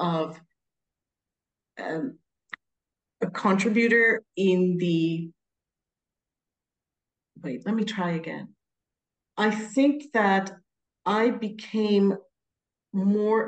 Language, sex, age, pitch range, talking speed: English, female, 40-59, 175-210 Hz, 75 wpm